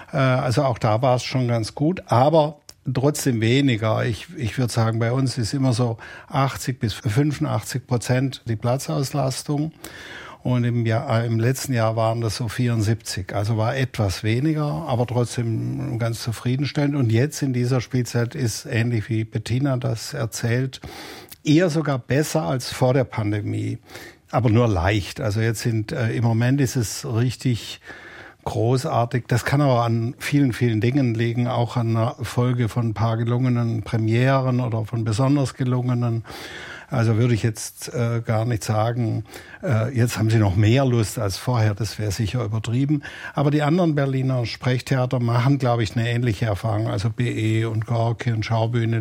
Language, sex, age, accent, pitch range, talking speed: German, male, 60-79, German, 115-130 Hz, 165 wpm